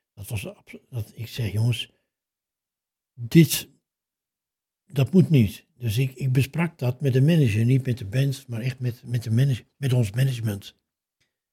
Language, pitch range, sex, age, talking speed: Dutch, 110-135 Hz, male, 60-79, 165 wpm